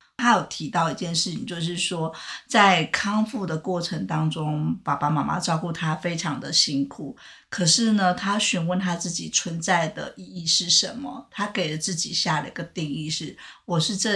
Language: Chinese